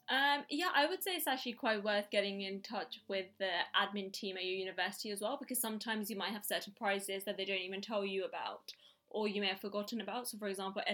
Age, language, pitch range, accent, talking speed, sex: 20-39, English, 200-230 Hz, British, 240 wpm, female